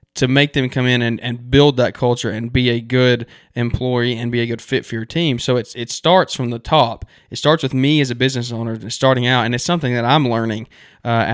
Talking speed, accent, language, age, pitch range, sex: 255 wpm, American, English, 20-39, 120-135 Hz, male